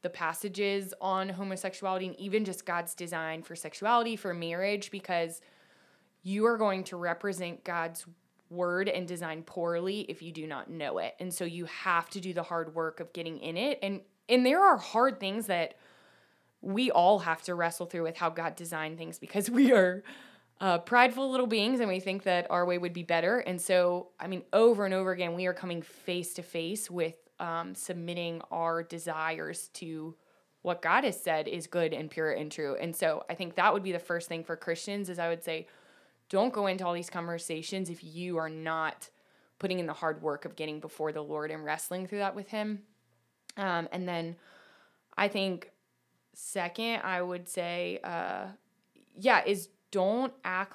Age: 20-39